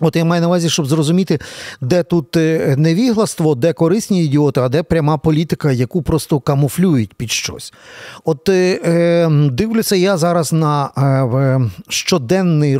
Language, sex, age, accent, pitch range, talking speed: Ukrainian, male, 40-59, native, 145-180 Hz, 140 wpm